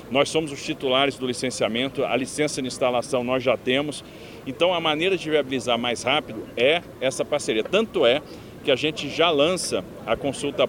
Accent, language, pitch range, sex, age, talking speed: Brazilian, Portuguese, 120-140 Hz, male, 40-59, 180 wpm